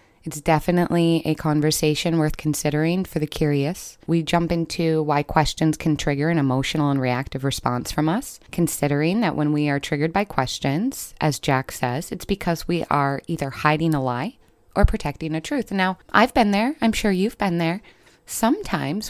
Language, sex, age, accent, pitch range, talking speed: English, female, 20-39, American, 150-185 Hz, 175 wpm